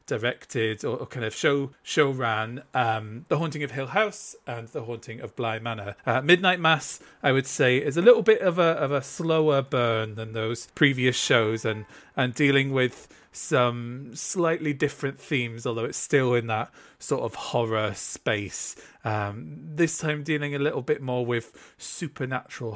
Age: 40-59